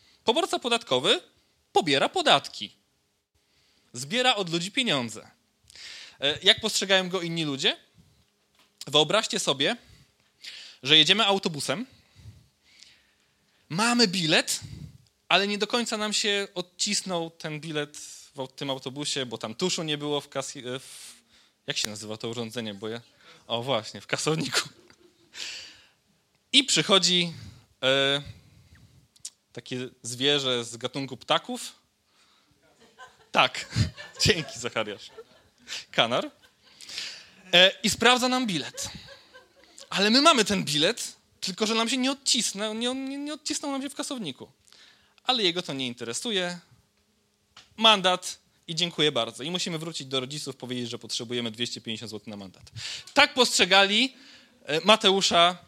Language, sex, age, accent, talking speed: Polish, male, 20-39, native, 115 wpm